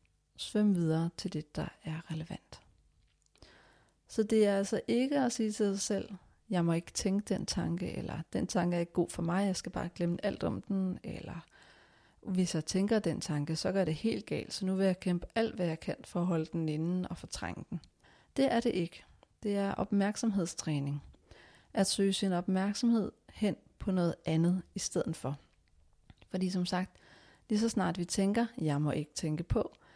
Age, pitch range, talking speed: 40-59, 165-205 Hz, 200 wpm